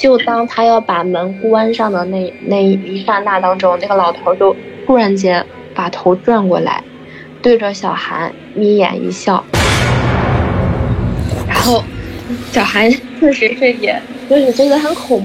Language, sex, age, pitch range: Chinese, female, 20-39, 195-255 Hz